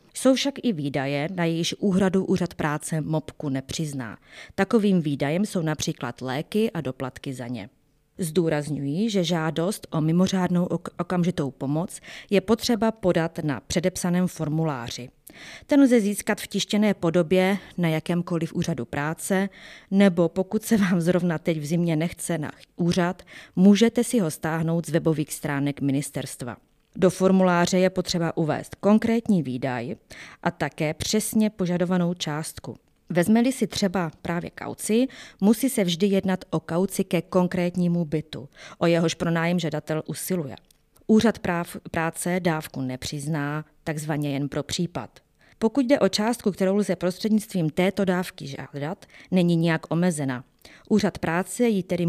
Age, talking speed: 20-39, 140 wpm